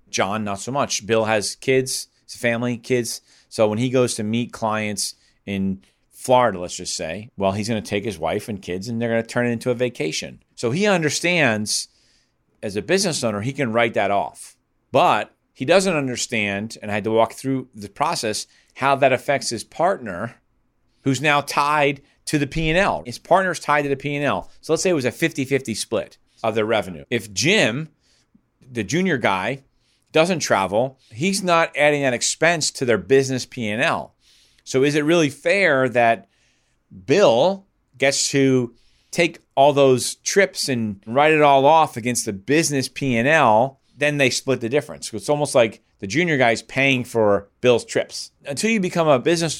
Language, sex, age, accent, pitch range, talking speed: English, male, 40-59, American, 110-145 Hz, 180 wpm